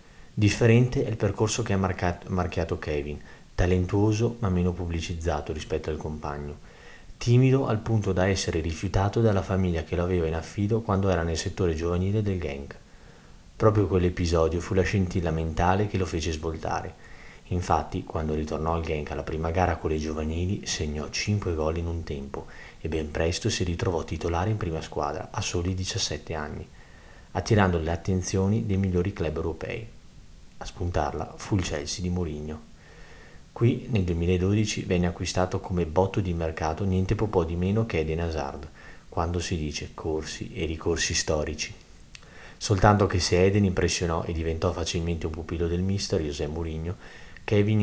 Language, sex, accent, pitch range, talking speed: Italian, male, native, 80-95 Hz, 160 wpm